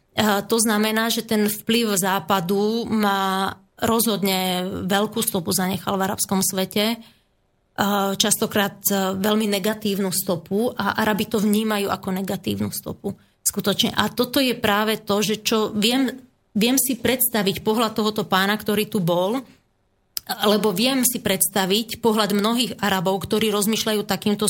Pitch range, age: 190-220 Hz, 30-49